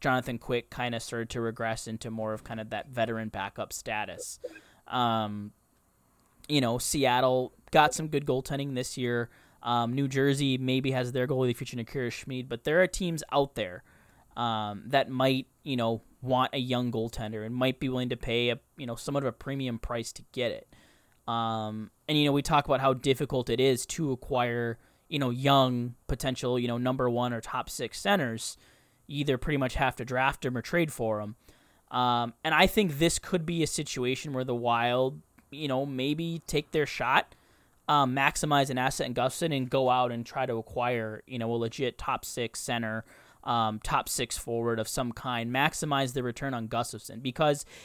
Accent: American